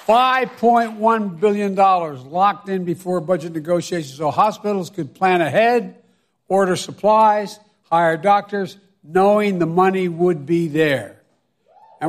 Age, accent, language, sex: 60-79, American, English, male